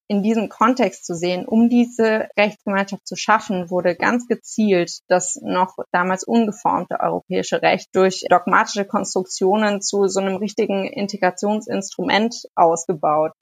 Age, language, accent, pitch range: 20-39, German, German, 195-225 Hz